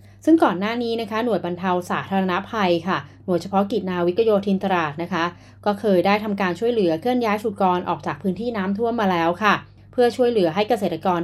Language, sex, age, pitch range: Thai, female, 20-39, 170-205 Hz